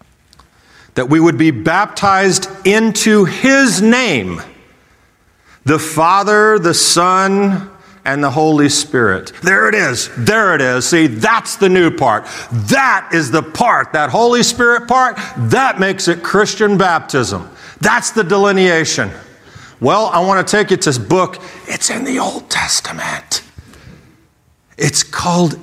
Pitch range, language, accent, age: 125-190 Hz, English, American, 50-69